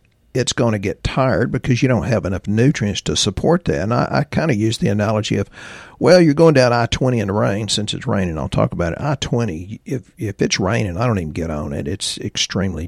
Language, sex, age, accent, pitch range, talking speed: English, male, 50-69, American, 95-130 Hz, 240 wpm